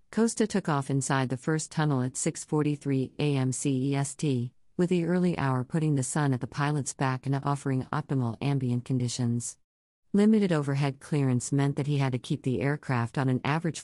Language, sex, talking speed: English, female, 180 wpm